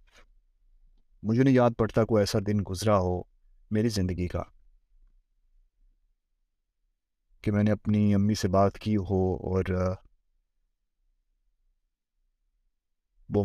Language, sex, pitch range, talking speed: Urdu, male, 75-105 Hz, 105 wpm